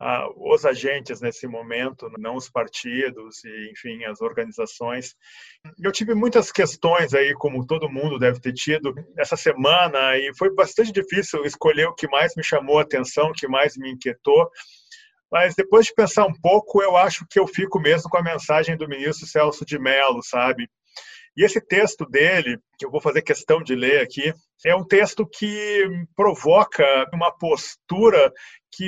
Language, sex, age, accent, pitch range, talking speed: Portuguese, male, 40-59, Brazilian, 150-205 Hz, 170 wpm